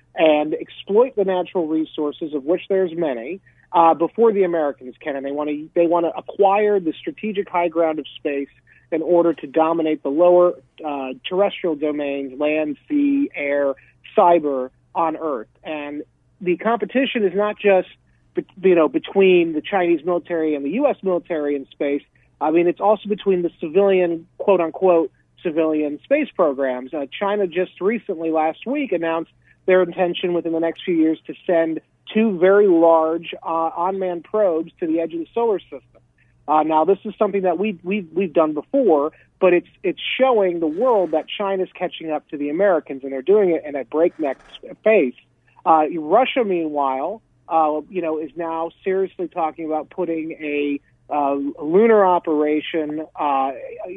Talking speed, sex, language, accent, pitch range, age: 170 wpm, male, English, American, 150-190 Hz, 40-59